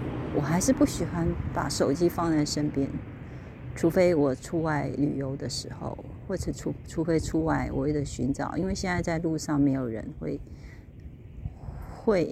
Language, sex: Chinese, female